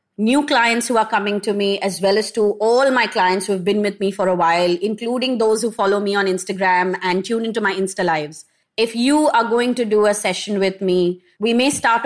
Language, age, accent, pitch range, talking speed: English, 30-49, Indian, 195-245 Hz, 235 wpm